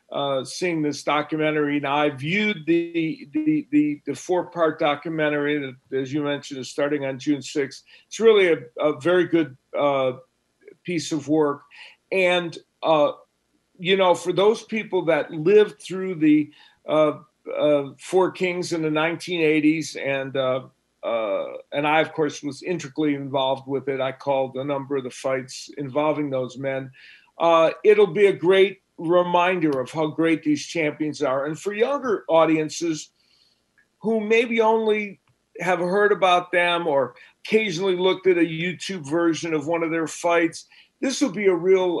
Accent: American